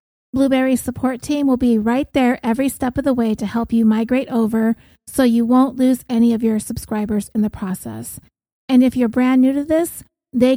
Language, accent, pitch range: English, American, 210-255 Hz